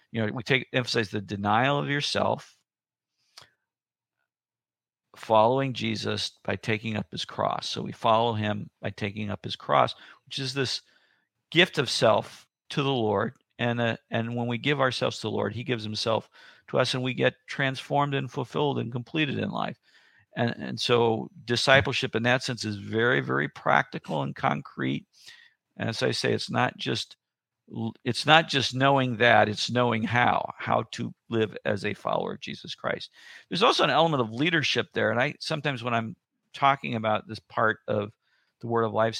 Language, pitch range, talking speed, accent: English, 110-135 Hz, 180 wpm, American